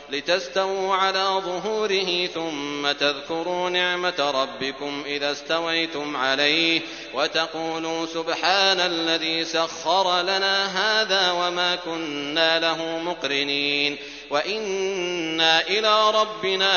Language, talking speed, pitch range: Arabic, 80 wpm, 145-180 Hz